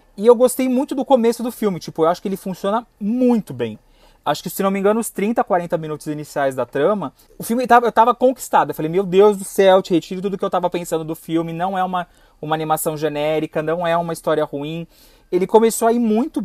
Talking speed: 240 wpm